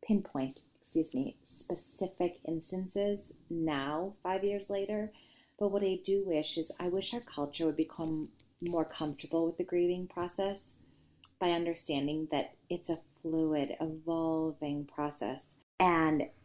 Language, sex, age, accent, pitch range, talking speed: English, female, 30-49, American, 155-185 Hz, 130 wpm